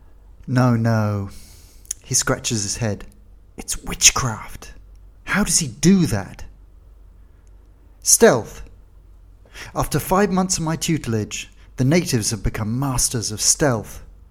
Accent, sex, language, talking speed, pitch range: British, male, English, 115 wpm, 90-130 Hz